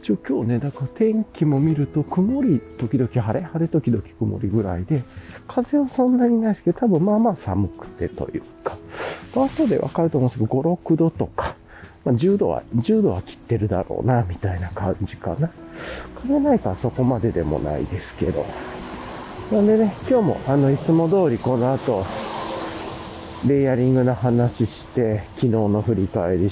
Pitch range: 100-160 Hz